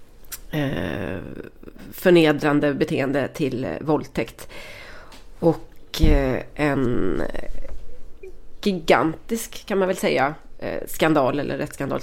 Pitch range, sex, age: 145-170 Hz, female, 30-49